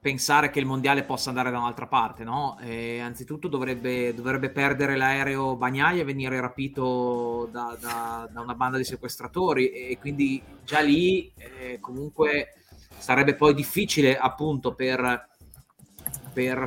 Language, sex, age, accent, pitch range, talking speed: Italian, male, 30-49, native, 120-140 Hz, 135 wpm